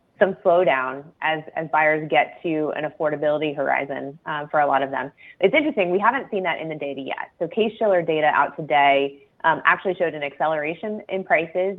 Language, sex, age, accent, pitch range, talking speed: English, female, 20-39, American, 150-185 Hz, 195 wpm